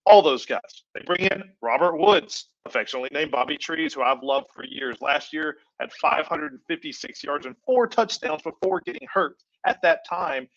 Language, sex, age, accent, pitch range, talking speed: English, male, 40-59, American, 180-255 Hz, 175 wpm